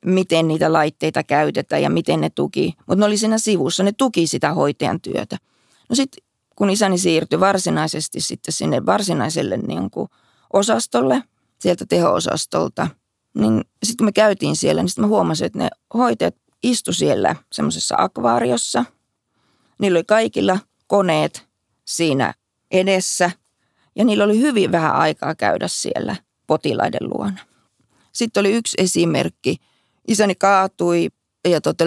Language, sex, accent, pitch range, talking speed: Finnish, female, native, 165-205 Hz, 135 wpm